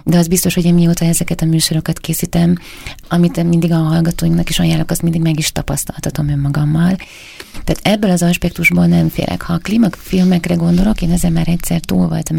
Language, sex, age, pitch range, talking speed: Hungarian, female, 30-49, 165-180 Hz, 190 wpm